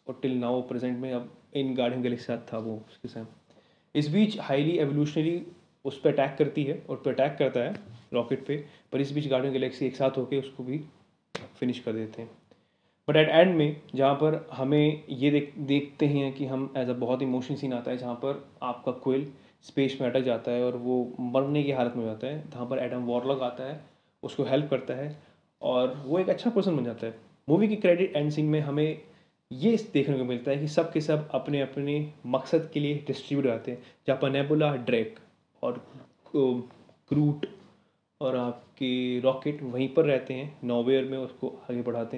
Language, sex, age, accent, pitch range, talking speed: Hindi, male, 20-39, native, 125-150 Hz, 200 wpm